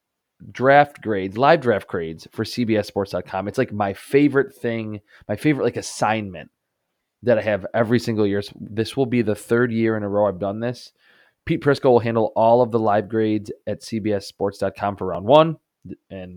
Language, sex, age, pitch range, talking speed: English, male, 20-39, 100-120 Hz, 180 wpm